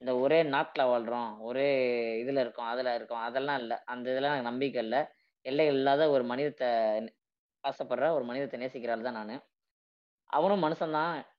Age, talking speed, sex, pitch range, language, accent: 20-39, 150 wpm, female, 125-145 Hz, Tamil, native